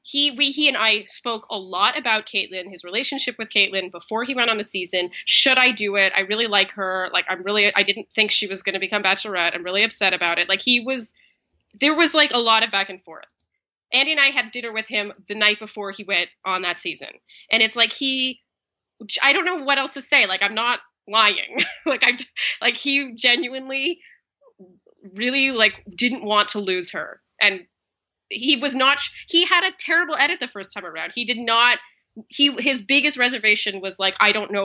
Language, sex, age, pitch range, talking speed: English, female, 20-39, 195-265 Hz, 215 wpm